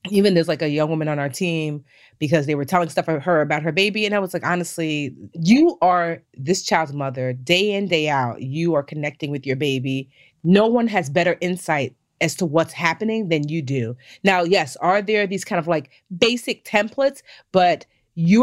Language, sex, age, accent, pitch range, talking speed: English, female, 30-49, American, 160-220 Hz, 205 wpm